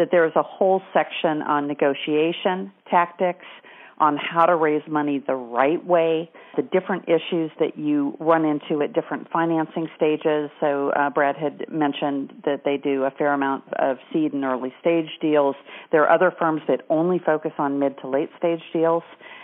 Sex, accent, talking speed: female, American, 175 wpm